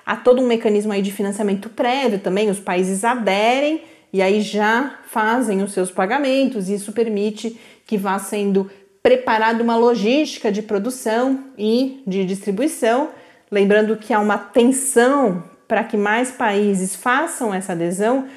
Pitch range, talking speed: 190-240 Hz, 145 wpm